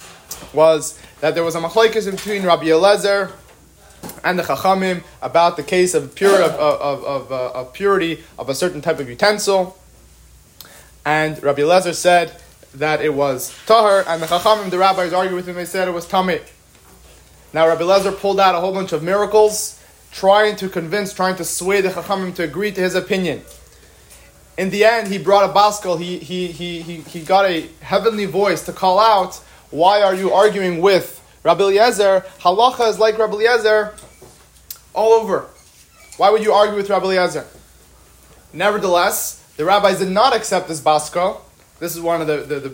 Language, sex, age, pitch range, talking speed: English, male, 30-49, 160-200 Hz, 180 wpm